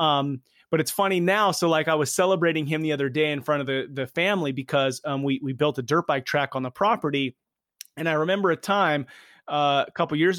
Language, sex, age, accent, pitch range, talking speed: English, male, 30-49, American, 140-175 Hz, 235 wpm